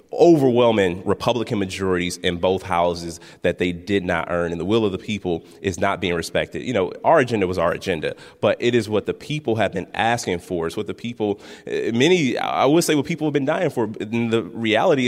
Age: 30-49